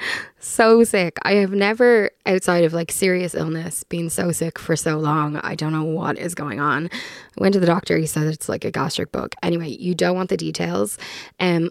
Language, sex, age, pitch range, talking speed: English, female, 10-29, 165-195 Hz, 215 wpm